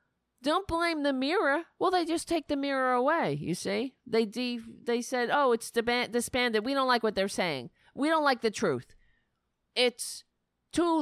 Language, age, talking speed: English, 40-59, 180 wpm